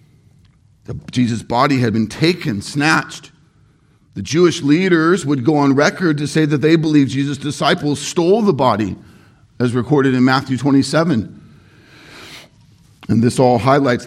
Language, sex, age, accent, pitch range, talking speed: English, male, 50-69, American, 130-170 Hz, 135 wpm